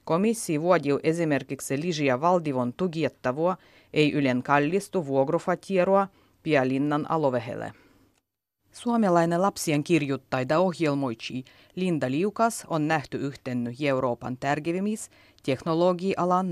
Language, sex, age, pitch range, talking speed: Finnish, female, 30-49, 135-195 Hz, 85 wpm